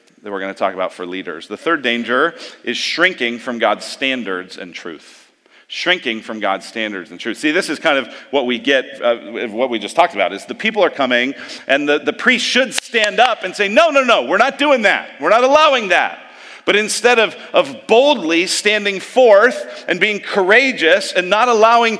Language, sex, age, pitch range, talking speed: English, male, 40-59, 165-220 Hz, 205 wpm